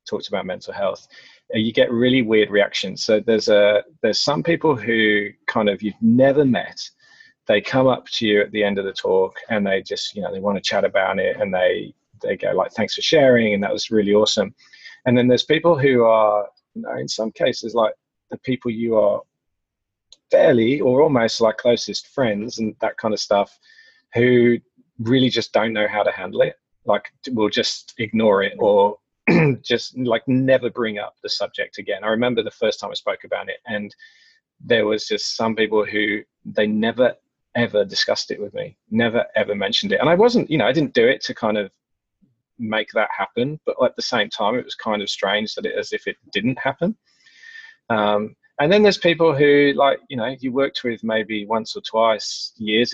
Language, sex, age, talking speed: English, male, 30-49, 205 wpm